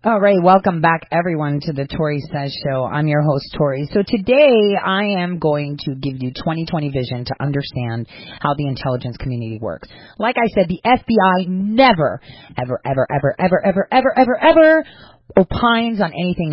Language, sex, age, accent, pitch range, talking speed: English, female, 30-49, American, 135-205 Hz, 170 wpm